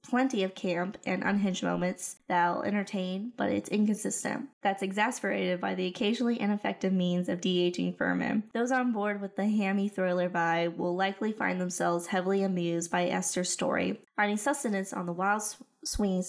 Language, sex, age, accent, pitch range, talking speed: English, female, 20-39, American, 180-220 Hz, 160 wpm